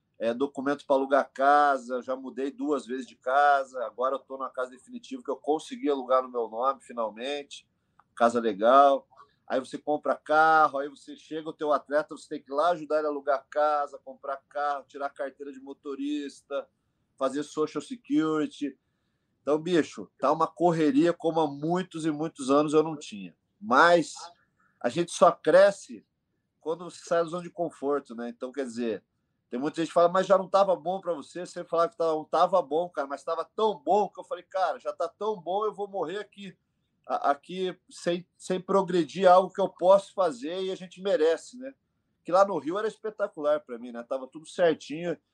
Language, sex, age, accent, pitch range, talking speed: Portuguese, male, 40-59, Brazilian, 140-180 Hz, 195 wpm